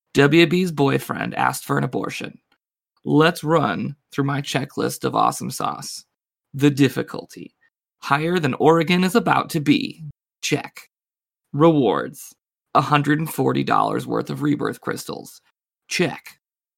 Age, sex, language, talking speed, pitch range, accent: 20-39, male, English, 110 wpm, 140-175 Hz, American